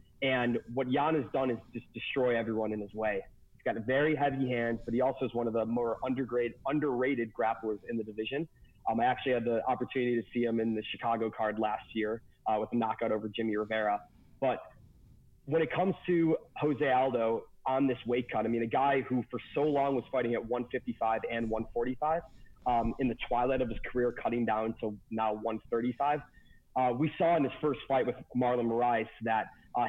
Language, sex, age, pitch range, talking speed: English, male, 30-49, 115-130 Hz, 205 wpm